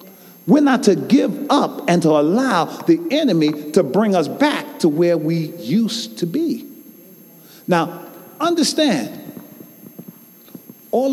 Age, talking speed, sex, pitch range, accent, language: 40-59, 125 wpm, male, 170-255 Hz, American, English